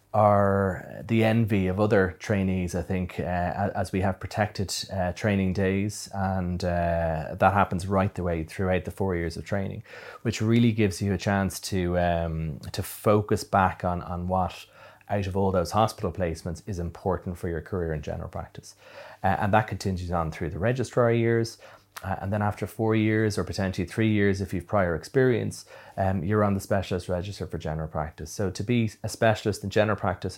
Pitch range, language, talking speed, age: 90-105 Hz, English, 190 wpm, 30-49